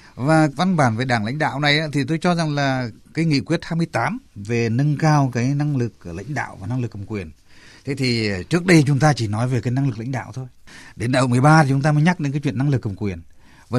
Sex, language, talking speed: male, Vietnamese, 270 wpm